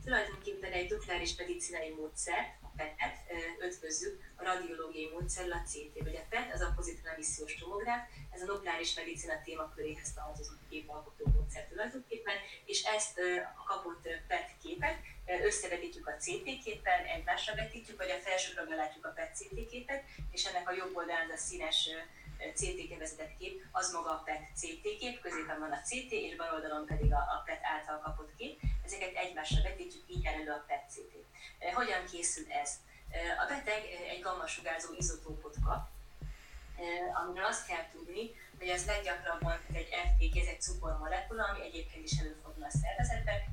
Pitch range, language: 155-215 Hz, Hungarian